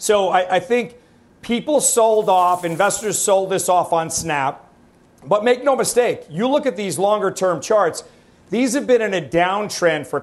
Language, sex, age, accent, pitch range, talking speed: English, male, 40-59, American, 170-210 Hz, 180 wpm